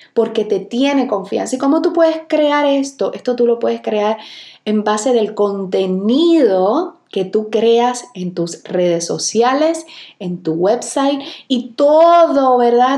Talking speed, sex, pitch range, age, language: 150 wpm, female, 205-275 Hz, 30-49, Spanish